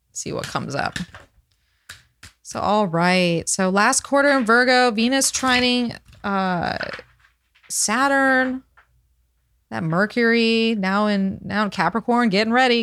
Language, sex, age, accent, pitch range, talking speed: English, female, 20-39, American, 180-225 Hz, 115 wpm